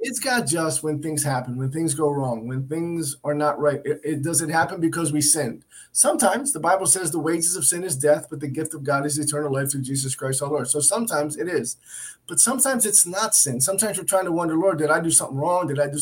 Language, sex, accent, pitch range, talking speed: English, male, American, 140-185 Hz, 255 wpm